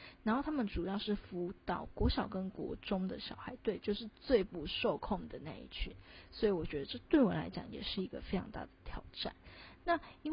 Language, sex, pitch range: Chinese, female, 185-235 Hz